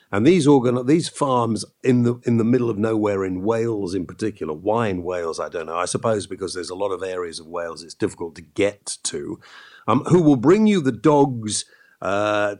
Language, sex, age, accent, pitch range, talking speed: English, male, 50-69, British, 100-140 Hz, 215 wpm